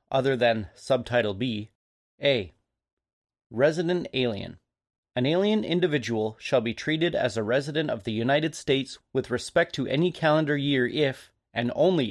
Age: 30-49